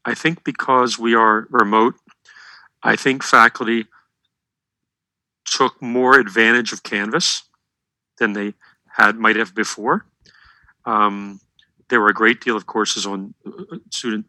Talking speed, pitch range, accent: 125 wpm, 105-125 Hz, American